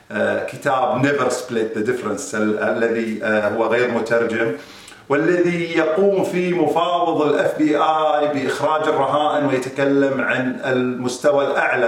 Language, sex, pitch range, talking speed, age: Arabic, male, 150-200 Hz, 105 wpm, 40-59